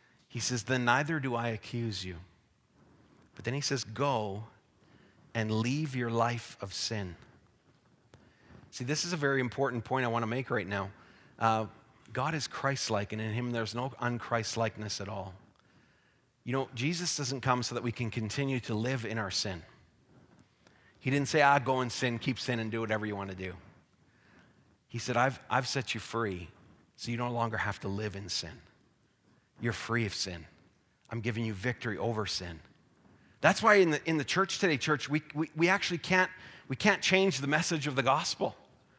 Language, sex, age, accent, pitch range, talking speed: English, male, 40-59, American, 110-155 Hz, 190 wpm